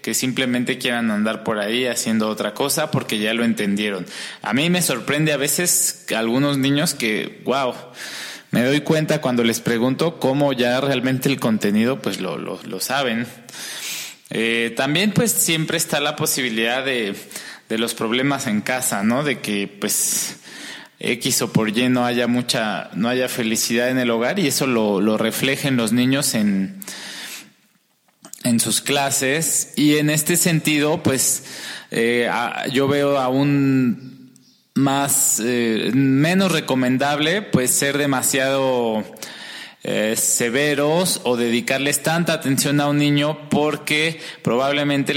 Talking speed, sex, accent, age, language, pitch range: 140 wpm, male, Mexican, 20-39, Spanish, 120-145 Hz